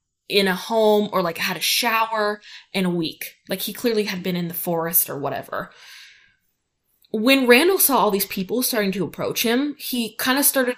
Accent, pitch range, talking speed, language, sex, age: American, 185-250 Hz, 195 wpm, English, female, 10-29